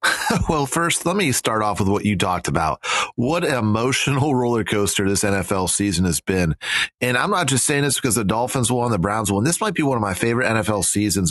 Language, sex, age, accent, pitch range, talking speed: English, male, 30-49, American, 105-130 Hz, 230 wpm